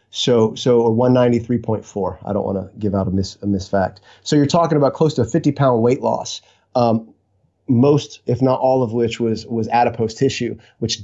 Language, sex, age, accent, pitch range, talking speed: English, male, 30-49, American, 110-130 Hz, 230 wpm